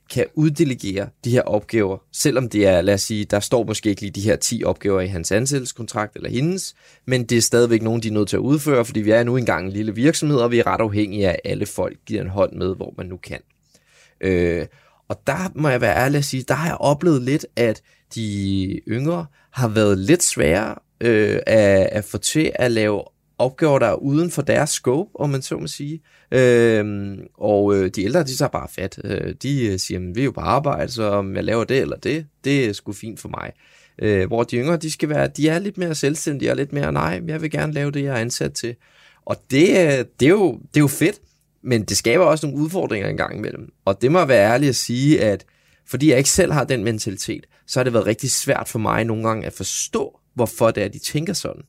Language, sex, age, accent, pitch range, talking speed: Danish, male, 20-39, native, 105-145 Hz, 240 wpm